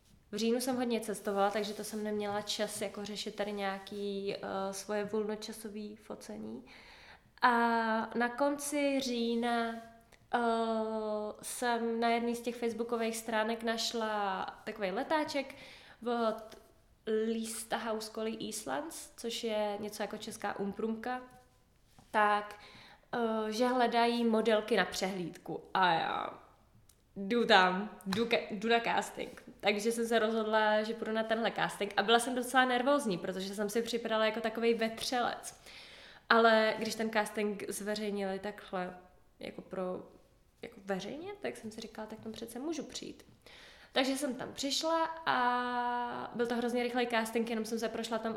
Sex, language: female, Czech